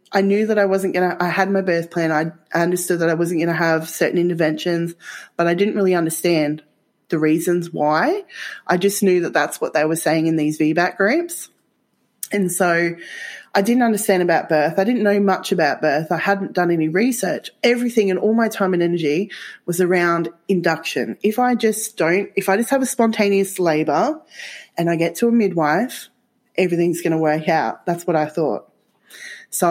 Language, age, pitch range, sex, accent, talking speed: English, 20-39, 165-205 Hz, female, Australian, 200 wpm